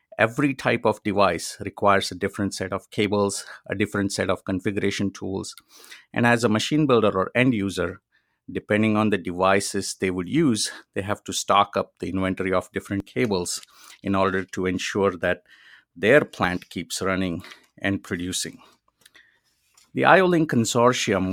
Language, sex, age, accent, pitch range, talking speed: English, male, 50-69, Indian, 95-120 Hz, 155 wpm